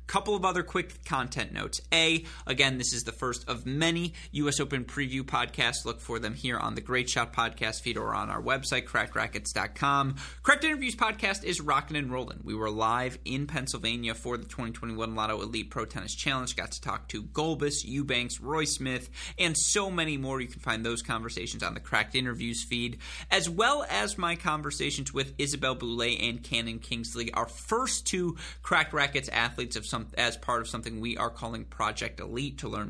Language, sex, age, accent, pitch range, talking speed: English, male, 30-49, American, 115-145 Hz, 190 wpm